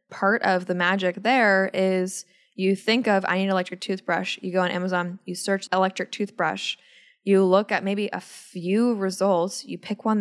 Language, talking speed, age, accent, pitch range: English, 190 wpm, 10-29, American, 175-200 Hz